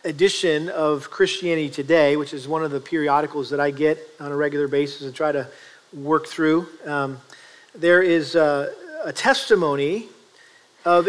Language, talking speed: English, 155 wpm